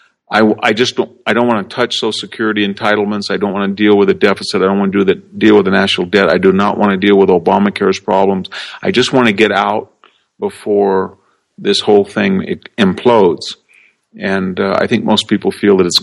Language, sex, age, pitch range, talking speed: English, male, 50-69, 95-105 Hz, 220 wpm